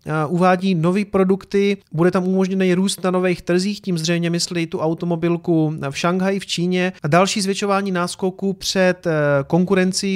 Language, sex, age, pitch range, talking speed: Czech, male, 30-49, 165-195 Hz, 150 wpm